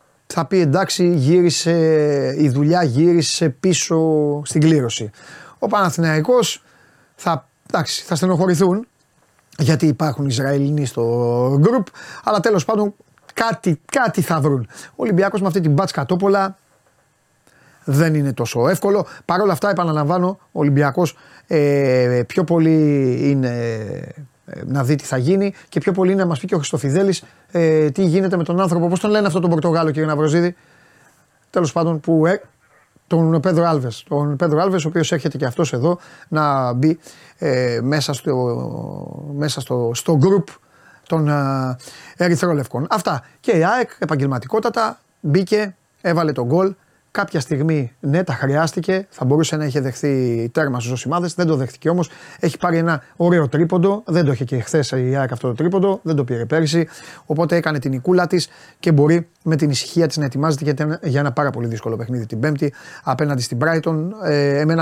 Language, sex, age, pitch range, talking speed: Greek, male, 30-49, 140-175 Hz, 155 wpm